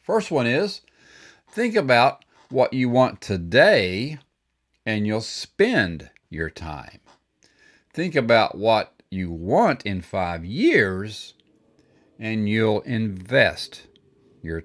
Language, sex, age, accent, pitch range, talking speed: English, male, 50-69, American, 80-110 Hz, 105 wpm